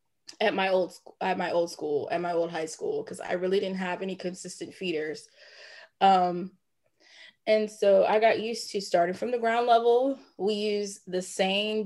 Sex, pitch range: female, 185-215 Hz